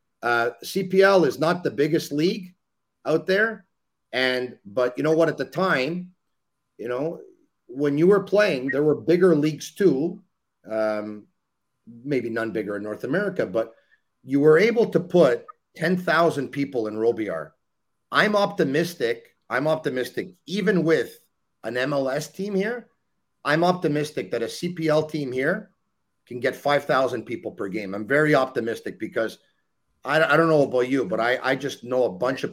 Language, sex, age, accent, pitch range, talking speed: French, male, 40-59, American, 130-185 Hz, 155 wpm